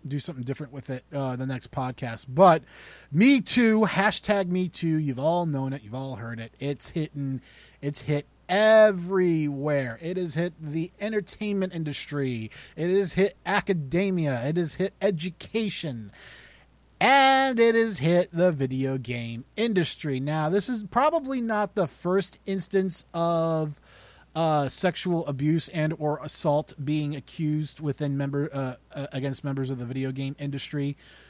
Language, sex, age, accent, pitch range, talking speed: English, male, 30-49, American, 140-185 Hz, 150 wpm